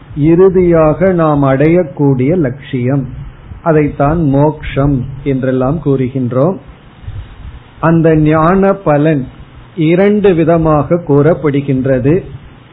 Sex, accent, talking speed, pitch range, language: male, native, 65 wpm, 135-170 Hz, Tamil